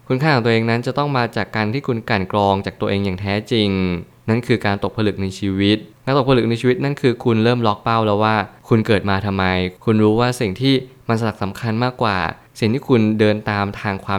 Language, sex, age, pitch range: Thai, male, 20-39, 100-120 Hz